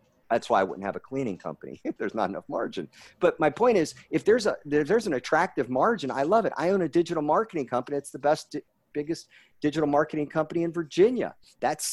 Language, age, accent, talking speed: English, 50-69, American, 220 wpm